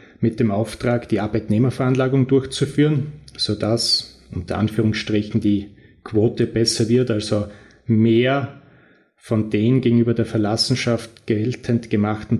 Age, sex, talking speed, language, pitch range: 30-49, male, 110 wpm, German, 110-120 Hz